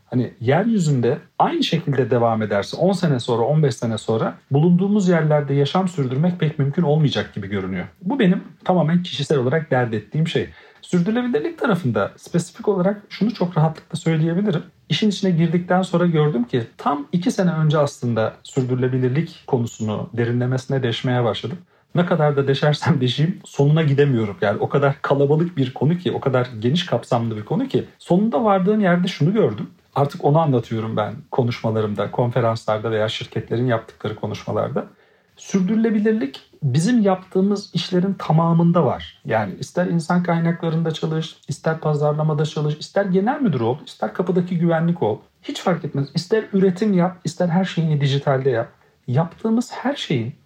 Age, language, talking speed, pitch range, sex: 40-59, Turkish, 150 wpm, 125-180 Hz, male